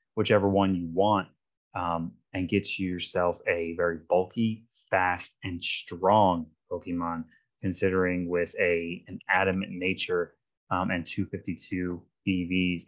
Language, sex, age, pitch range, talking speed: English, male, 20-39, 90-110 Hz, 115 wpm